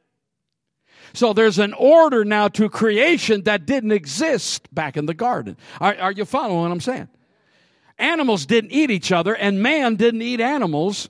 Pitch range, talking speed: 150-235 Hz, 170 wpm